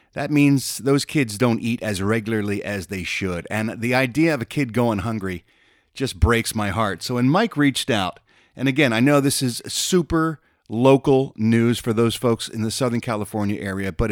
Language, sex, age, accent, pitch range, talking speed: English, male, 40-59, American, 105-140 Hz, 195 wpm